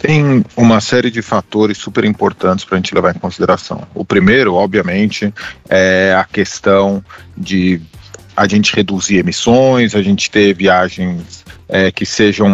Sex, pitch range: male, 95-110 Hz